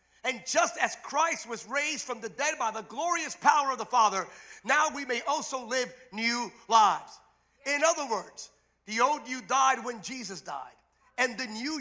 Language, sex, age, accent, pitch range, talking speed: English, male, 50-69, American, 215-285 Hz, 185 wpm